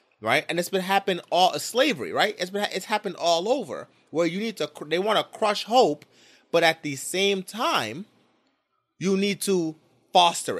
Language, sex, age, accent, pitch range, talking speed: English, male, 20-39, American, 145-195 Hz, 185 wpm